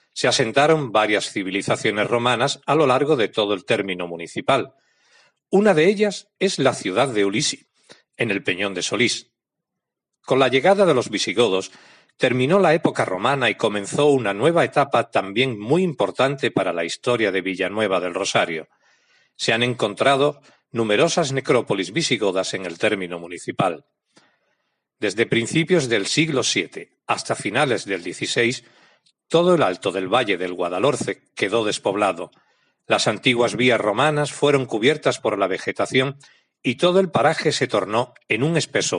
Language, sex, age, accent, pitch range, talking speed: Spanish, male, 40-59, Spanish, 115-155 Hz, 150 wpm